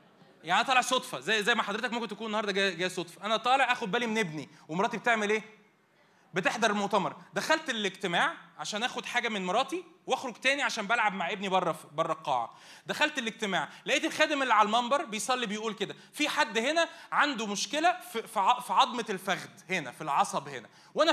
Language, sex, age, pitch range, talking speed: Arabic, male, 20-39, 185-245 Hz, 185 wpm